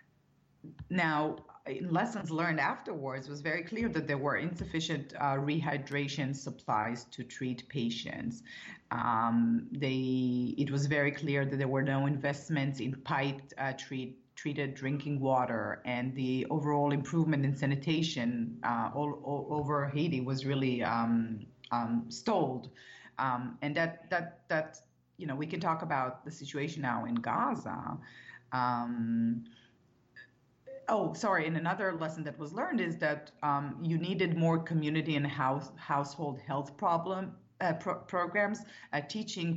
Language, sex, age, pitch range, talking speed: English, female, 30-49, 130-165 Hz, 140 wpm